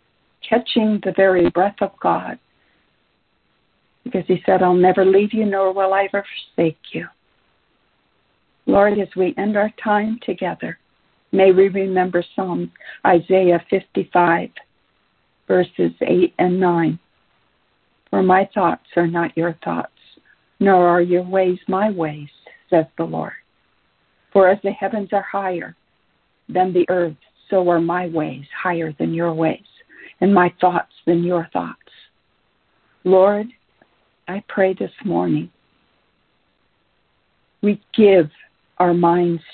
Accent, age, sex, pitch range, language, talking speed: American, 60-79, female, 175-200 Hz, English, 125 wpm